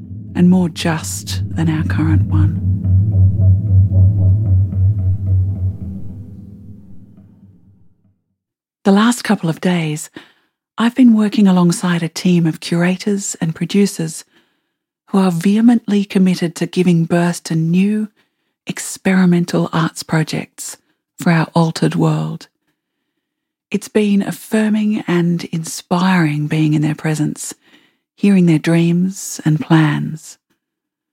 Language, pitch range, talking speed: English, 155-200 Hz, 100 wpm